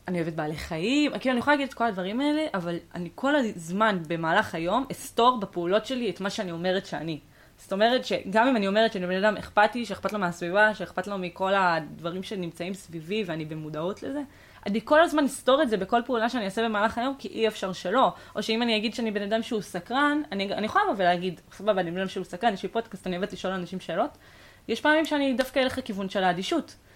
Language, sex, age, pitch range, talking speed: Hebrew, female, 20-39, 185-245 Hz, 195 wpm